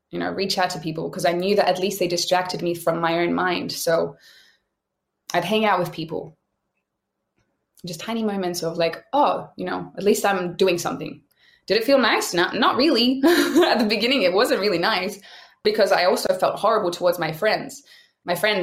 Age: 20-39